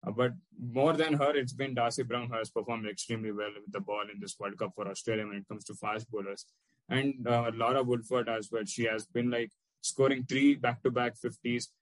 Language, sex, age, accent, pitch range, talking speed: English, male, 20-39, Indian, 110-125 Hz, 215 wpm